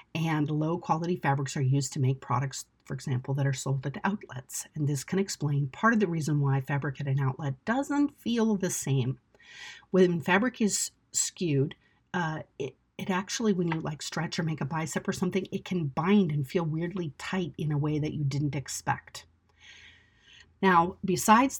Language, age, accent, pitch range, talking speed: English, 50-69, American, 145-195 Hz, 185 wpm